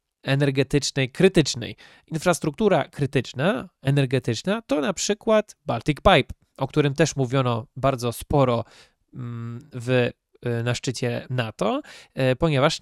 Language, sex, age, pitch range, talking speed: Polish, male, 20-39, 125-155 Hz, 100 wpm